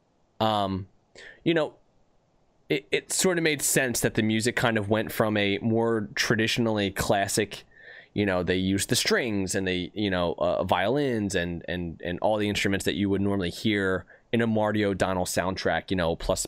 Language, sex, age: English, male, 20-39